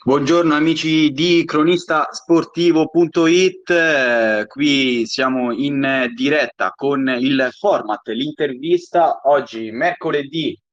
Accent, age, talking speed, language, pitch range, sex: native, 20-39, 90 wpm, Italian, 125-195 Hz, male